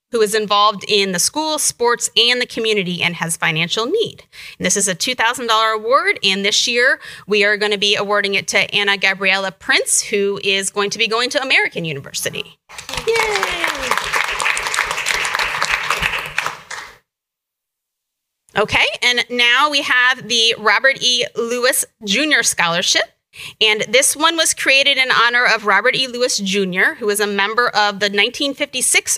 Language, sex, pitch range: English, female, 200-250 Hz